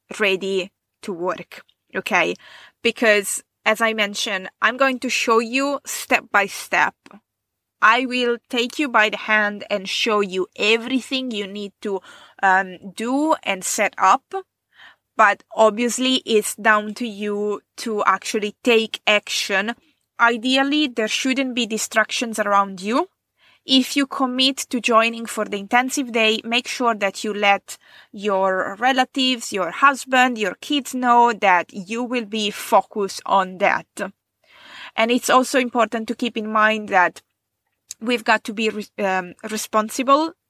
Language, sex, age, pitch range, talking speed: English, female, 20-39, 205-255 Hz, 140 wpm